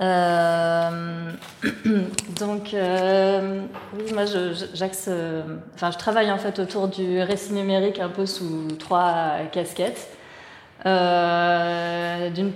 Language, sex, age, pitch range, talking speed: French, female, 20-39, 170-195 Hz, 105 wpm